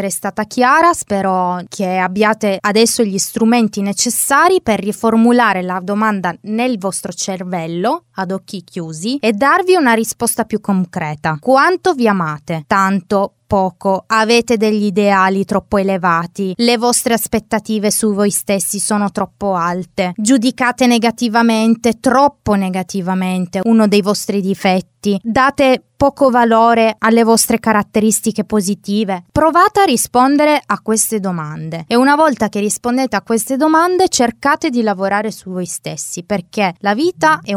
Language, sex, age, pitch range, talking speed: Italian, female, 20-39, 190-235 Hz, 135 wpm